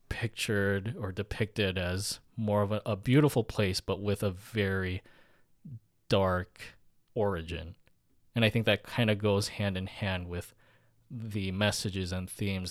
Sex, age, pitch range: male, 20-39, 95-110 Hz